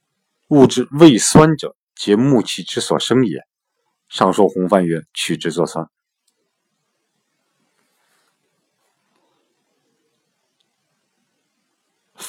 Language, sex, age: Chinese, male, 50-69